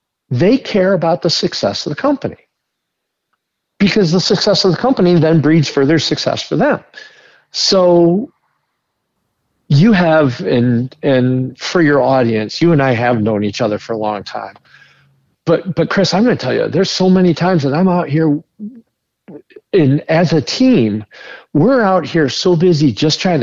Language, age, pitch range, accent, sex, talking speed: English, 50-69, 135-185 Hz, American, male, 170 wpm